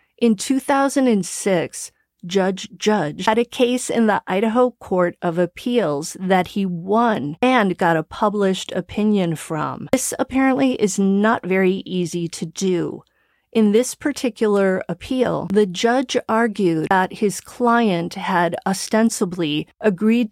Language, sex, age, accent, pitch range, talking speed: English, female, 40-59, American, 175-225 Hz, 125 wpm